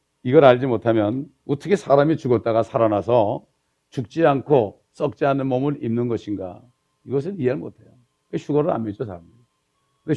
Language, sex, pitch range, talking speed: English, male, 115-145 Hz, 130 wpm